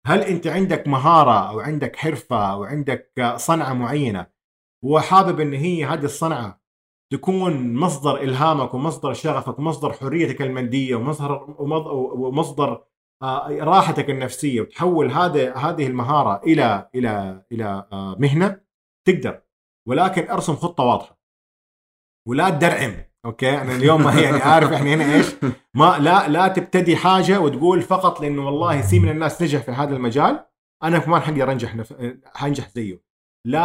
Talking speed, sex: 135 wpm, male